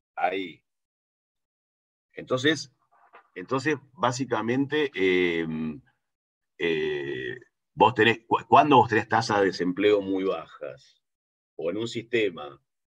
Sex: male